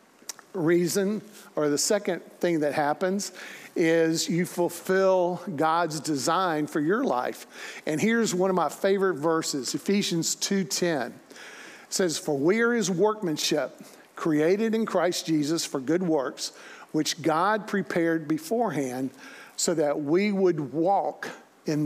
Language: English